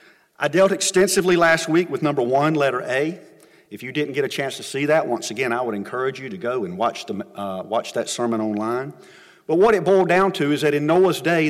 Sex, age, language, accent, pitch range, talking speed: male, 40-59, English, American, 110-165 Hz, 235 wpm